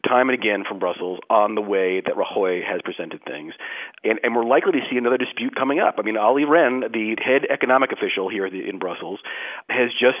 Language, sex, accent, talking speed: English, male, American, 210 wpm